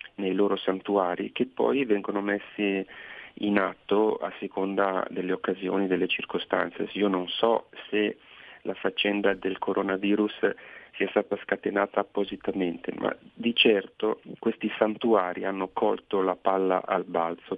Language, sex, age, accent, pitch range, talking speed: Italian, male, 40-59, native, 95-110 Hz, 130 wpm